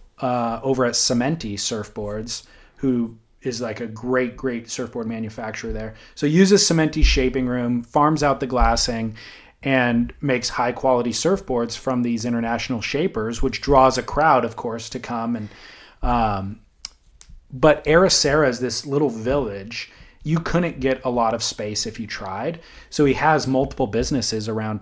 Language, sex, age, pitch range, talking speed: English, male, 30-49, 115-135 Hz, 155 wpm